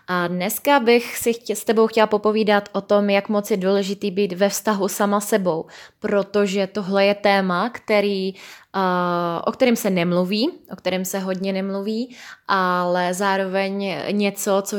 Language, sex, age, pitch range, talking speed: Czech, female, 20-39, 190-215 Hz, 160 wpm